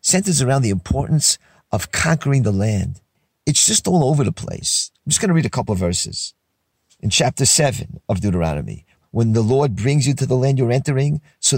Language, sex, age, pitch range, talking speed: English, male, 40-59, 115-160 Hz, 200 wpm